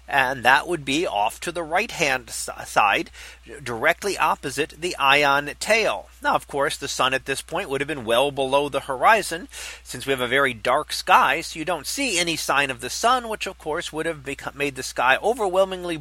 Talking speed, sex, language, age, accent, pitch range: 205 wpm, male, English, 40-59, American, 140-215 Hz